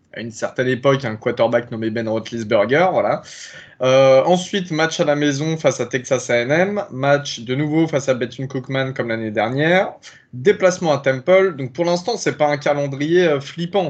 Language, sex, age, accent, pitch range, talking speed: French, male, 20-39, French, 125-160 Hz, 175 wpm